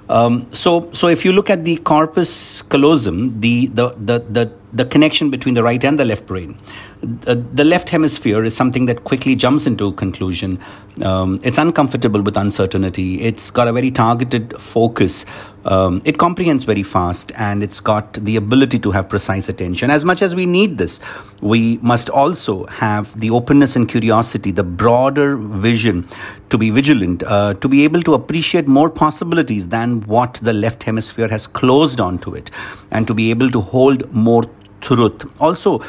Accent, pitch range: Indian, 105-135 Hz